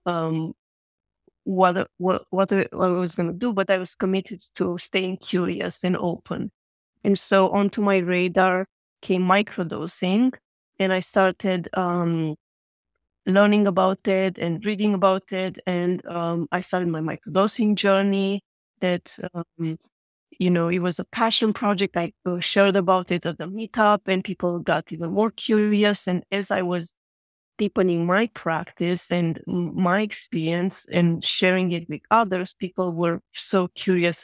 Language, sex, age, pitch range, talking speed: English, female, 20-39, 175-195 Hz, 150 wpm